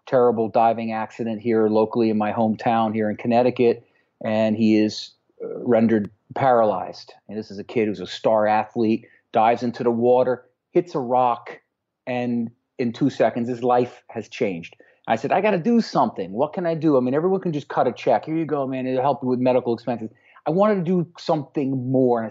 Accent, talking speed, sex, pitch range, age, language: American, 205 wpm, male, 115-150 Hz, 40-59, English